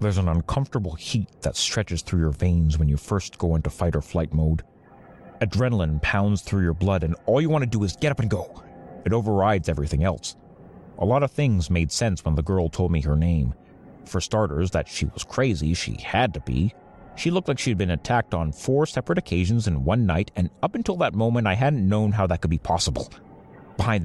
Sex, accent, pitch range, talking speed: male, American, 85-115 Hz, 220 wpm